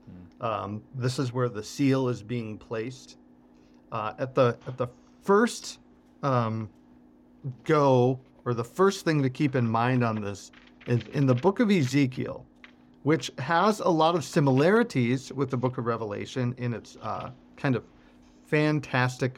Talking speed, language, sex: 155 wpm, English, male